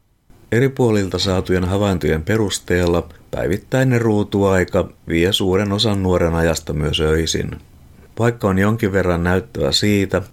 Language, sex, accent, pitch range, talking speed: Finnish, male, native, 85-100 Hz, 115 wpm